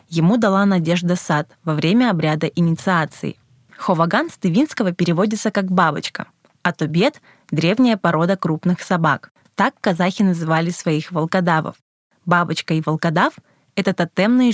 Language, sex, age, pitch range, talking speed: Russian, female, 20-39, 160-200 Hz, 125 wpm